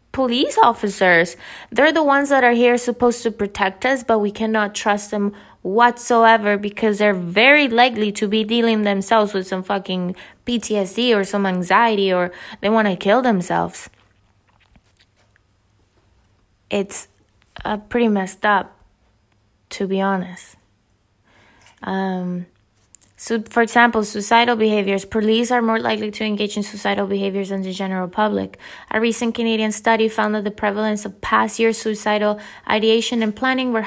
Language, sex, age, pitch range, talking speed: English, female, 20-39, 185-225 Hz, 145 wpm